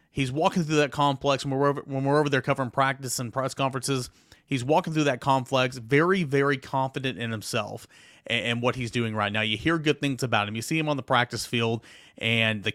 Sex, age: male, 30-49